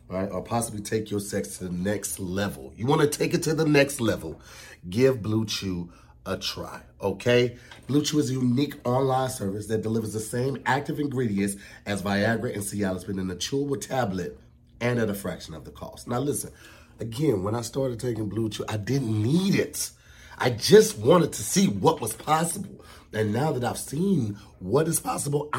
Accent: American